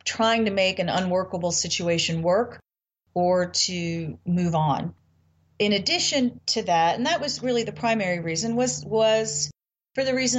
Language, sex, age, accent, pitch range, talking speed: English, female, 40-59, American, 165-215 Hz, 155 wpm